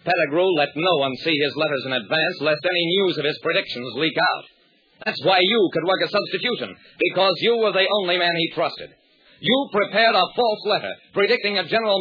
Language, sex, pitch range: English, male, 150-205 Hz